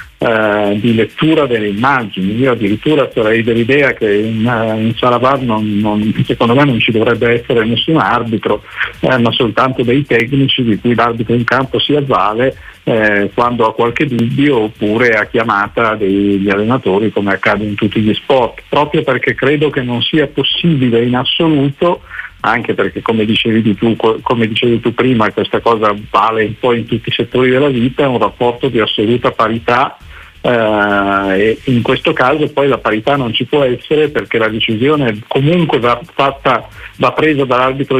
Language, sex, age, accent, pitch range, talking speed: Italian, male, 50-69, native, 110-135 Hz, 165 wpm